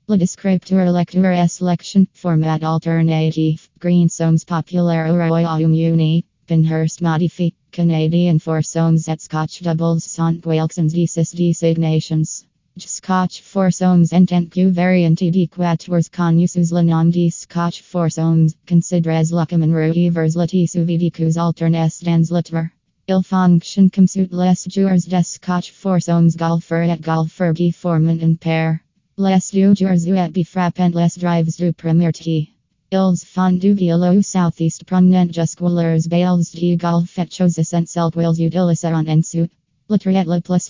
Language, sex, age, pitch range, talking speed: English, female, 20-39, 165-180 Hz, 130 wpm